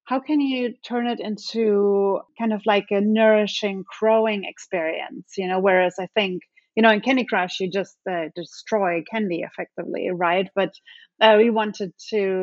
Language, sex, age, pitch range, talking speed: English, female, 30-49, 190-225 Hz, 170 wpm